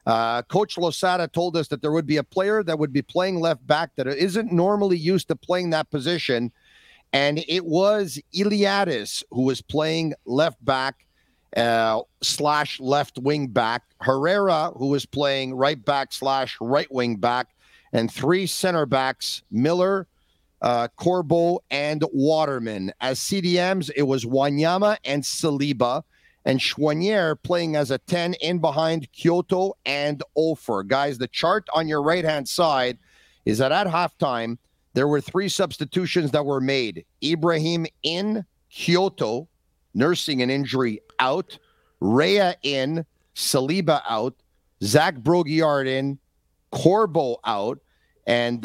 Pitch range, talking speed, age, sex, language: 130-175 Hz, 125 wpm, 50-69, male, French